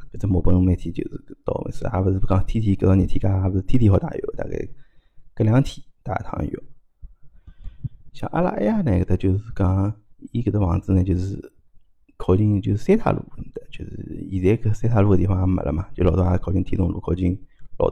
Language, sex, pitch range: Chinese, male, 90-110 Hz